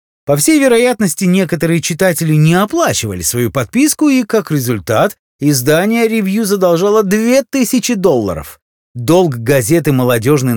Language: Russian